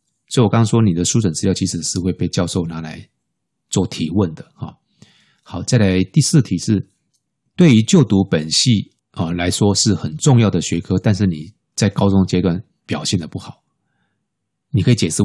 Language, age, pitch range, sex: Chinese, 20-39, 90-115 Hz, male